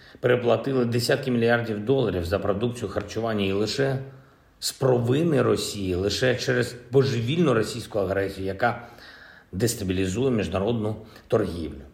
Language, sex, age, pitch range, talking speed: Ukrainian, male, 50-69, 95-125 Hz, 105 wpm